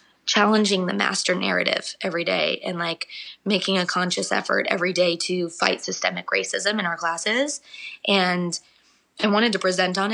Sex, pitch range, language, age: female, 170-195 Hz, English, 20-39